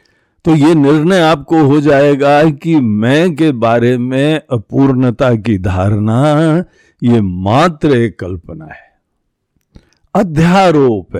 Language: Hindi